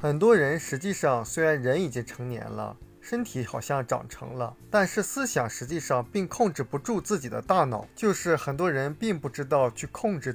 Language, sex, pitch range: Chinese, male, 125-195 Hz